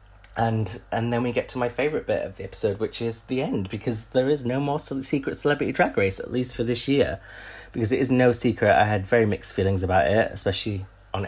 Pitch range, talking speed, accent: 95-120 Hz, 235 wpm, British